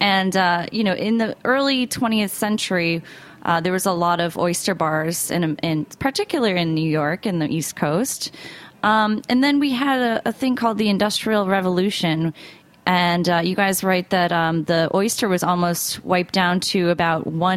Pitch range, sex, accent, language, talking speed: 160-200 Hz, female, American, English, 185 wpm